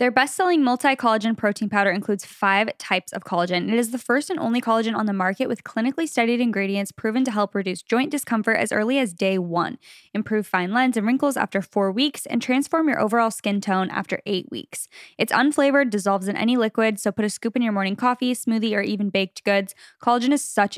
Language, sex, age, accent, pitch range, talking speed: English, female, 10-29, American, 200-250 Hz, 215 wpm